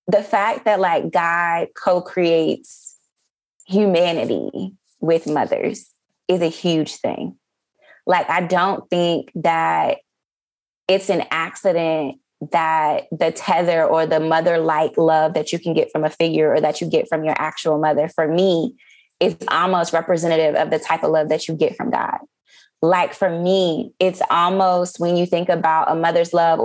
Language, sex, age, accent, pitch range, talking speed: English, female, 20-39, American, 155-185 Hz, 160 wpm